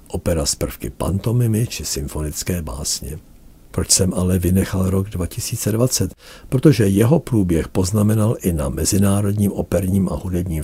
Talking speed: 130 wpm